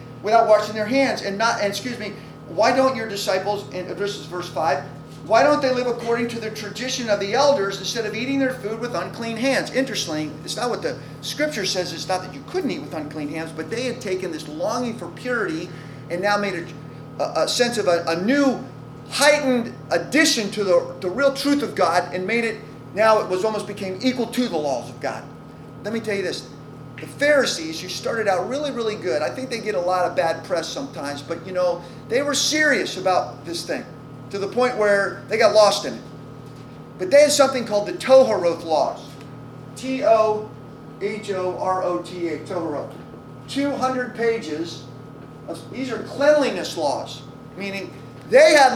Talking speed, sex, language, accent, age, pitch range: 195 wpm, male, English, American, 40-59, 165-245 Hz